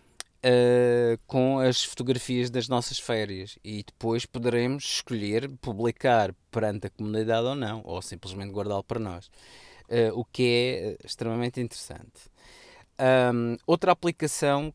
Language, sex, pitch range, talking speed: Portuguese, male, 110-135 Hz, 115 wpm